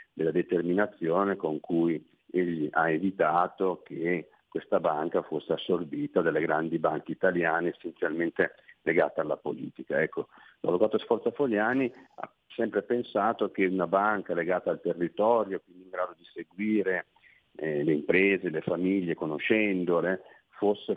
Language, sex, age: Italian, male, 40-59